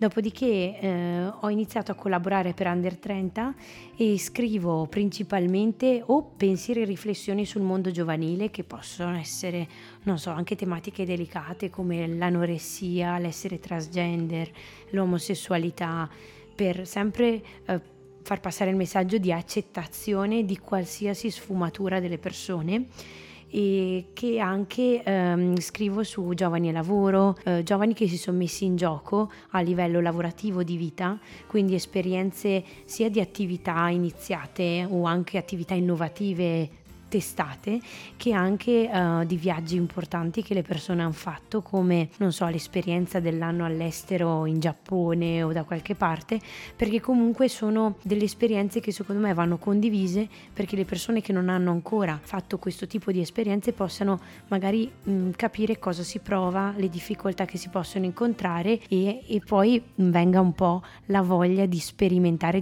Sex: female